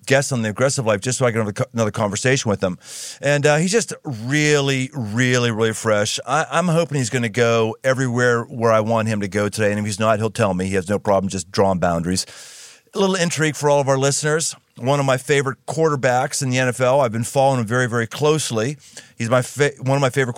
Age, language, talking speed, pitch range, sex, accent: 40-59, English, 240 wpm, 115-140 Hz, male, American